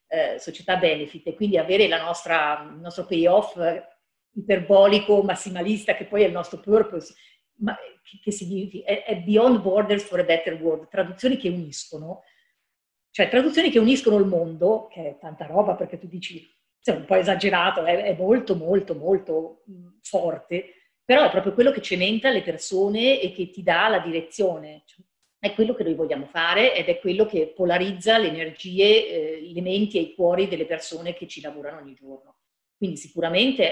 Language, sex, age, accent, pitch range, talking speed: Italian, female, 40-59, native, 165-210 Hz, 180 wpm